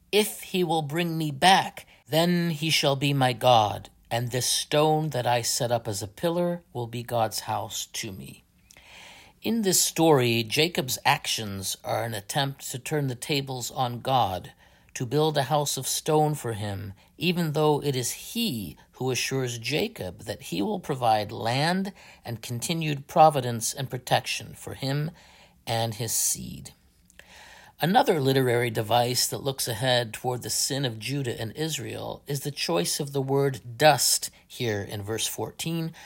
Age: 50-69